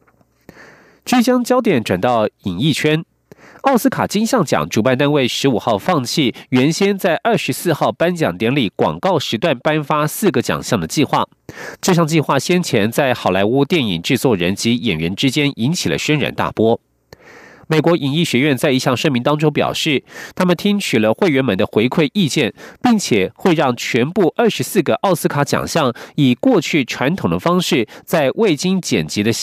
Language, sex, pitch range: German, male, 125-180 Hz